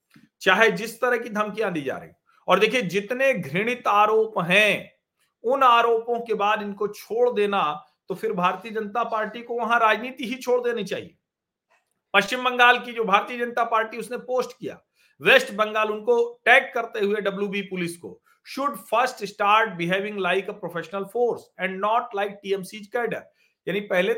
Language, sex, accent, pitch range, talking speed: Hindi, male, native, 200-240 Hz, 165 wpm